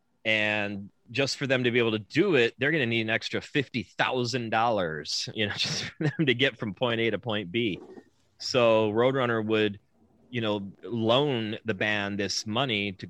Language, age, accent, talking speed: English, 30-49, American, 190 wpm